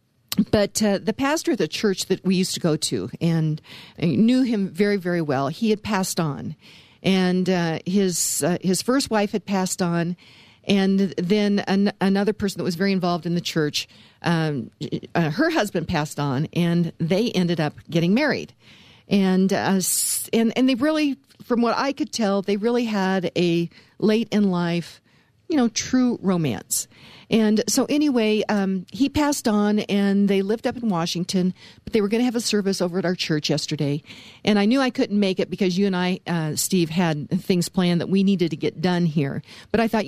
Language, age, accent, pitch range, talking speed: English, 50-69, American, 170-215 Hz, 195 wpm